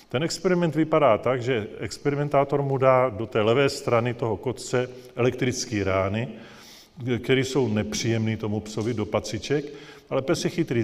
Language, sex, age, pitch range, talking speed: Czech, male, 40-59, 105-125 Hz, 150 wpm